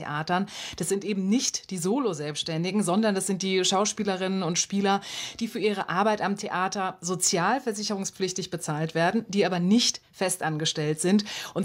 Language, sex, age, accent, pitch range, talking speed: German, female, 30-49, German, 175-225 Hz, 150 wpm